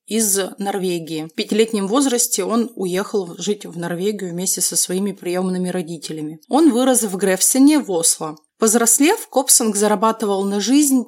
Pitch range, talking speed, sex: 180-240 Hz, 140 wpm, female